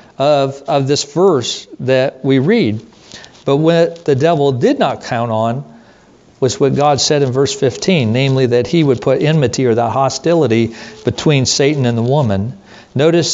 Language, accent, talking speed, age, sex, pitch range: English, American, 165 wpm, 50-69, male, 120-160 Hz